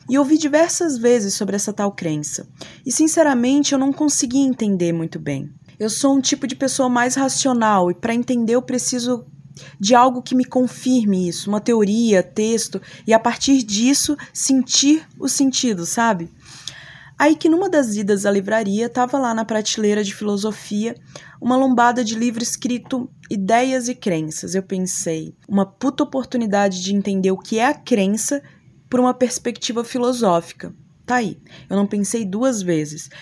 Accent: Brazilian